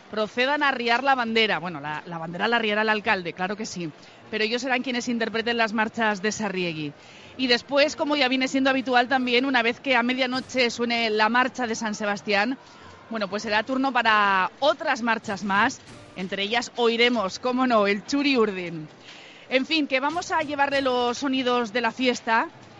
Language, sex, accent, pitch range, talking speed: Spanish, female, Spanish, 220-260 Hz, 185 wpm